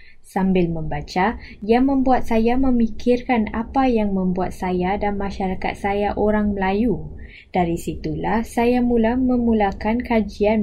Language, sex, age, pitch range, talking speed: Malay, female, 20-39, 185-230 Hz, 120 wpm